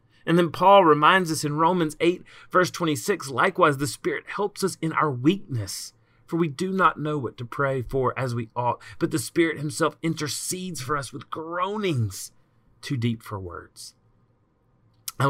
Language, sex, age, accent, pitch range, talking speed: English, male, 30-49, American, 110-150 Hz, 175 wpm